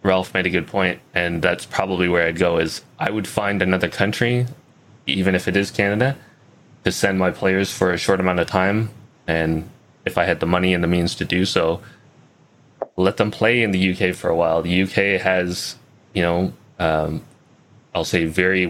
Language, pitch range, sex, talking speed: English, 90-100 Hz, male, 200 wpm